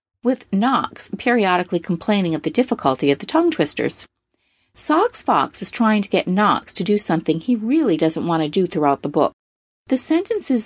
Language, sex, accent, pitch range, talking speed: English, female, American, 165-235 Hz, 180 wpm